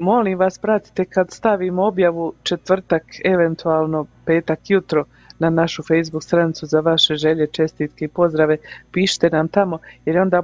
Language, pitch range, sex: Croatian, 155-185 Hz, female